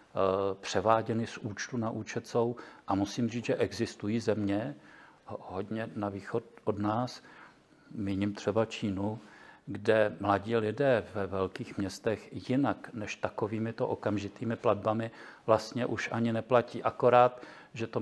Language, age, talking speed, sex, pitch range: Czech, 50-69, 125 wpm, male, 100-115 Hz